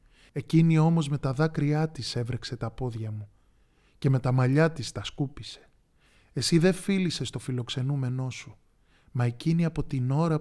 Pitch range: 110-145 Hz